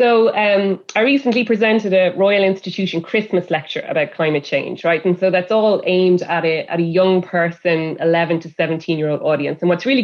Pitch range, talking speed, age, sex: 165-200 Hz, 185 wpm, 20-39, female